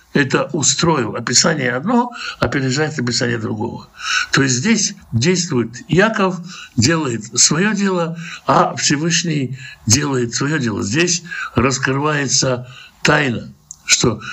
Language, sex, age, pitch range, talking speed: Russian, male, 60-79, 125-170 Hz, 105 wpm